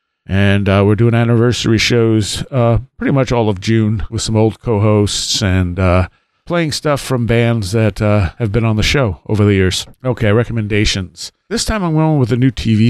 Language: English